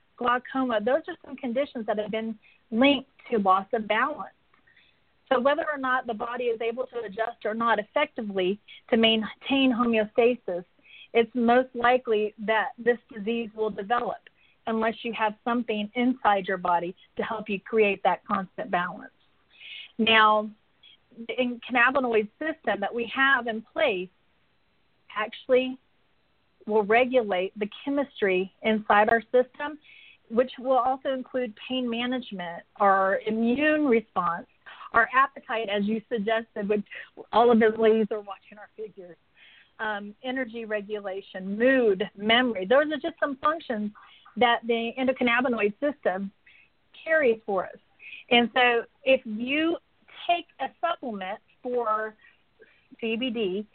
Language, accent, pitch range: English, American, 215-255 Hz